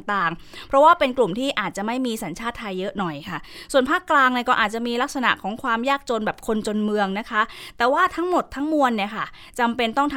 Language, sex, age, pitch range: Thai, female, 20-39, 200-260 Hz